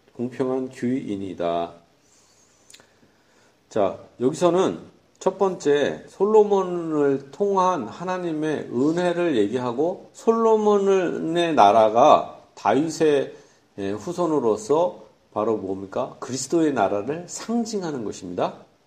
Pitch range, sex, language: 130-200 Hz, male, Korean